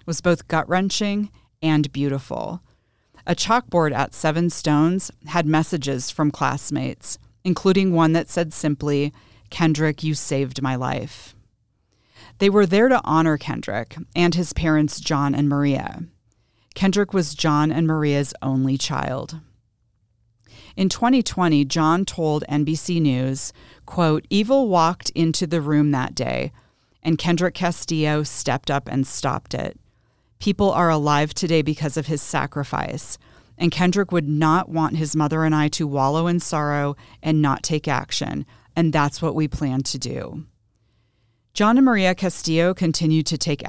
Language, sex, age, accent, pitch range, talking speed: English, female, 40-59, American, 140-175 Hz, 145 wpm